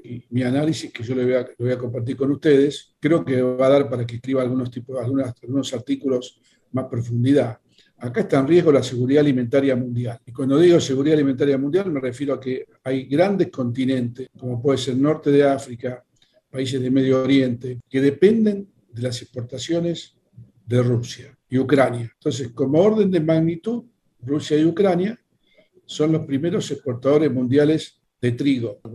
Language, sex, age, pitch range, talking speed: Spanish, male, 50-69, 125-150 Hz, 170 wpm